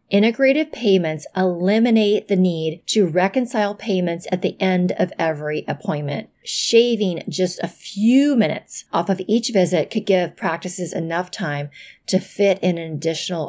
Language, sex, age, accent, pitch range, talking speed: English, female, 30-49, American, 170-220 Hz, 145 wpm